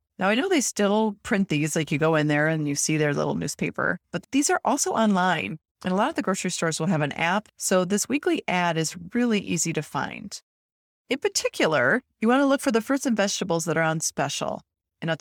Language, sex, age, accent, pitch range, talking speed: English, female, 30-49, American, 150-200 Hz, 235 wpm